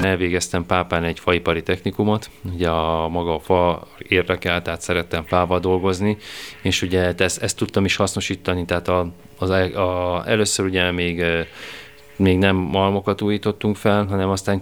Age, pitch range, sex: 20-39, 85-95 Hz, male